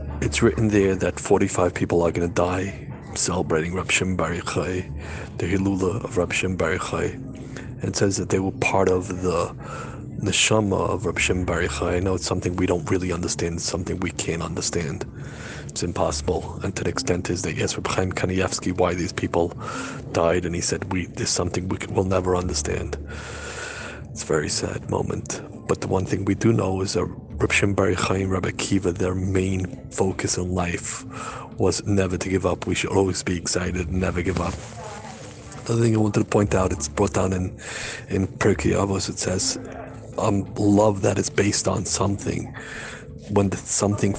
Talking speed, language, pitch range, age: 180 wpm, English, 90-100 Hz, 40-59